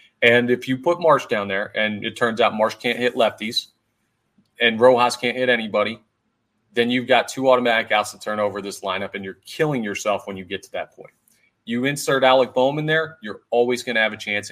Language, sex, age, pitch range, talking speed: English, male, 30-49, 105-120 Hz, 225 wpm